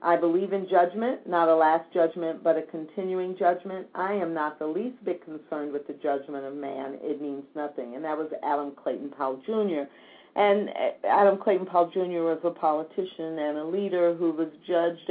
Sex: female